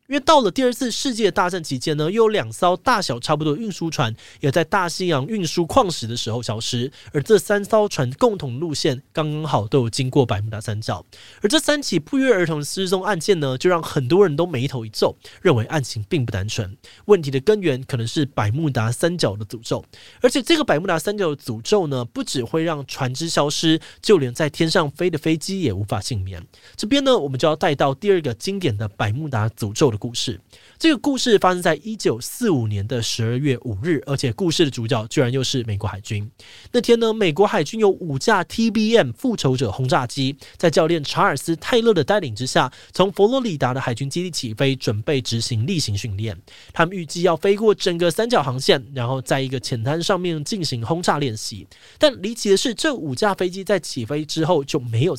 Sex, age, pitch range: male, 20-39, 120-190 Hz